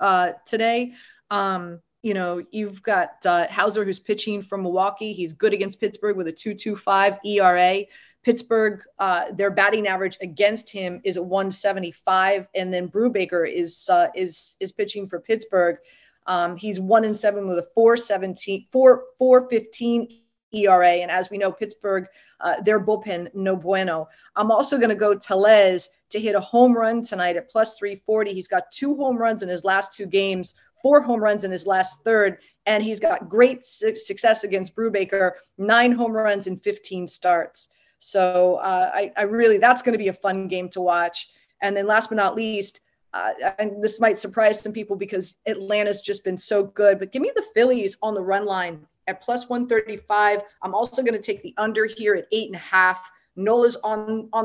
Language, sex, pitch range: English, female, 190-225 Hz